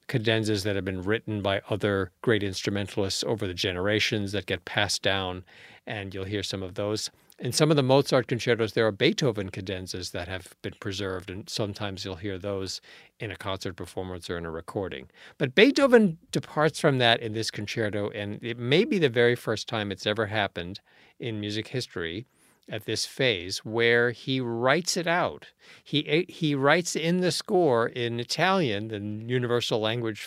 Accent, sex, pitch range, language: American, male, 105-135 Hz, English